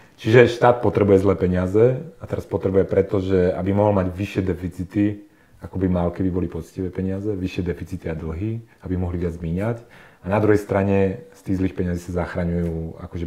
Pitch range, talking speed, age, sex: 90-105 Hz, 180 wpm, 30-49, male